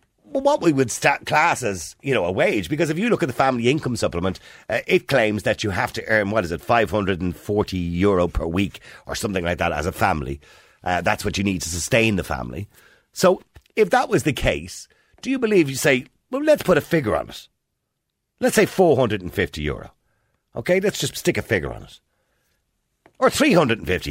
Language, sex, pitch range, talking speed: English, male, 95-155 Hz, 205 wpm